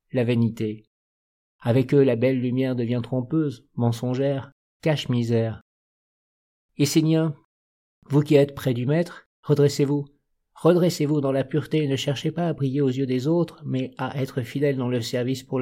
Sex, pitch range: male, 130-150 Hz